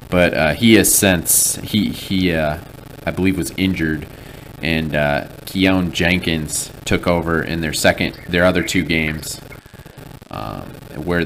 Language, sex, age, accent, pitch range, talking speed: English, male, 30-49, American, 80-100 Hz, 145 wpm